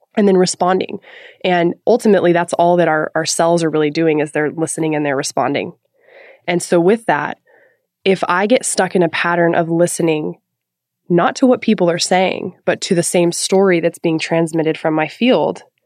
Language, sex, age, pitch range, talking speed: English, female, 20-39, 160-190 Hz, 190 wpm